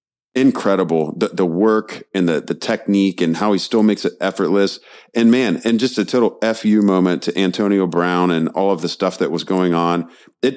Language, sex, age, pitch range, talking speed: English, male, 30-49, 90-120 Hz, 205 wpm